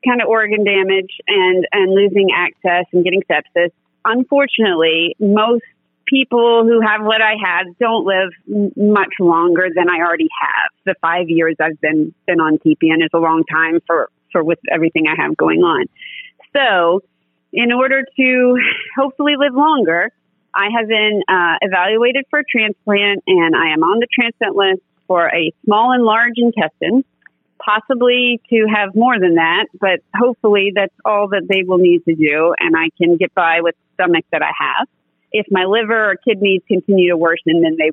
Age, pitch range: 30-49, 170-225 Hz